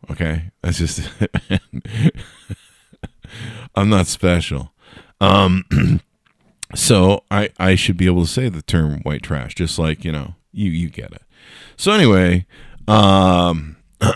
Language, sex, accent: English, male, American